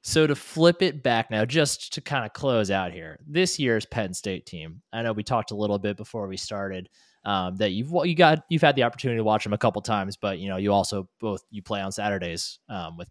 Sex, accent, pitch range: male, American, 95-130 Hz